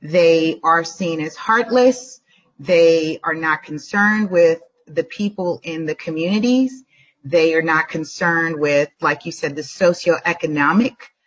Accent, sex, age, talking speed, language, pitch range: American, female, 30-49, 135 wpm, English, 155-195 Hz